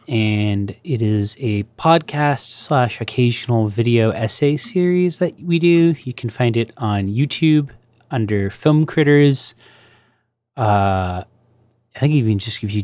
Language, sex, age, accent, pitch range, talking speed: English, male, 30-49, American, 105-120 Hz, 135 wpm